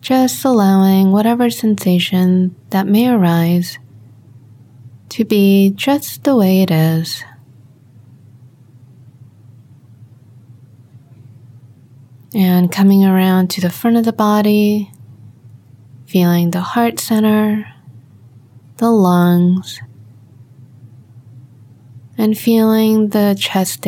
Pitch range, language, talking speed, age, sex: 120-195 Hz, English, 85 wpm, 20-39, female